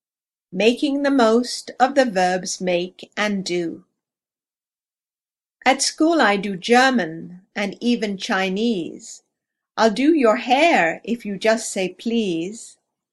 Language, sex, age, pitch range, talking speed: English, female, 50-69, 190-245 Hz, 120 wpm